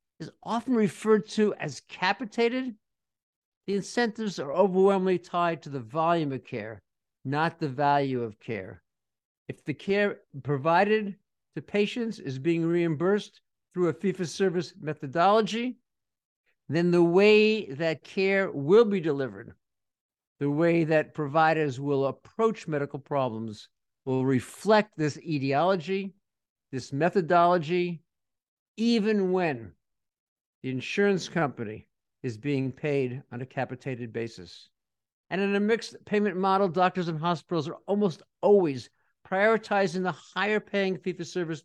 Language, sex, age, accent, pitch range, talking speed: English, male, 50-69, American, 140-195 Hz, 120 wpm